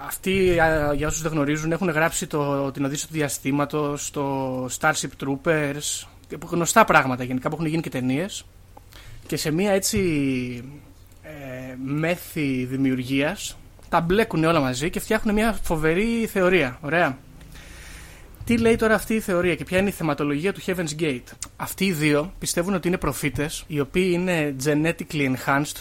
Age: 20-39